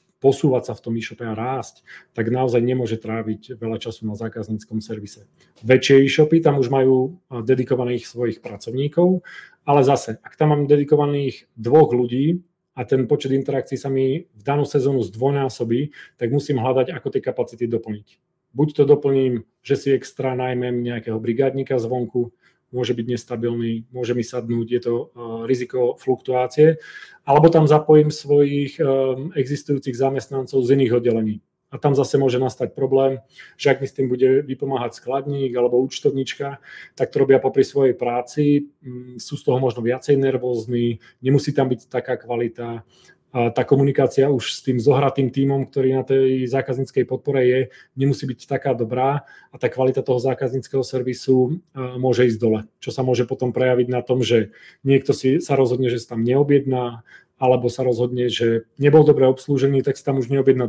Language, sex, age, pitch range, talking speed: Czech, male, 30-49, 120-140 Hz, 165 wpm